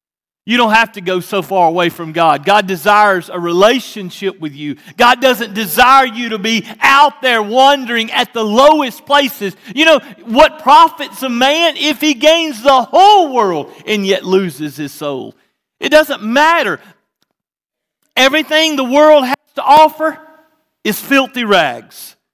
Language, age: English, 40-59